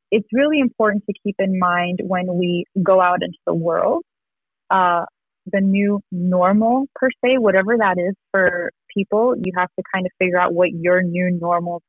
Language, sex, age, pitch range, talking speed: English, female, 20-39, 170-200 Hz, 185 wpm